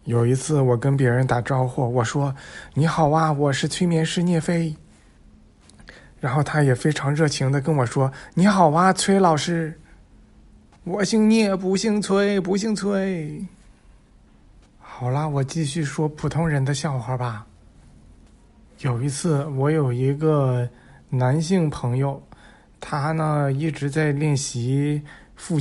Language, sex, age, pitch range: Chinese, male, 20-39, 130-155 Hz